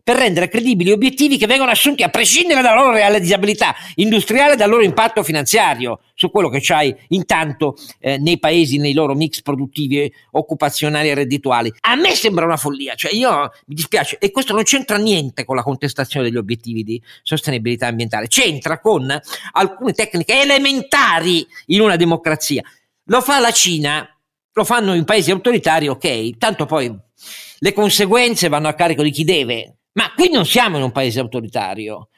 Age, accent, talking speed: 50-69, native, 170 wpm